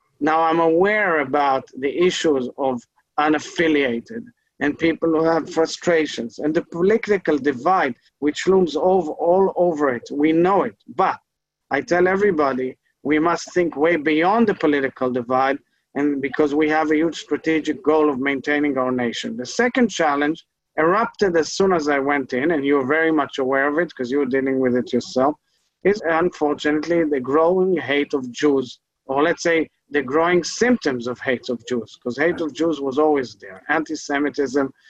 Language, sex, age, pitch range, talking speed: English, male, 40-59, 135-165 Hz, 175 wpm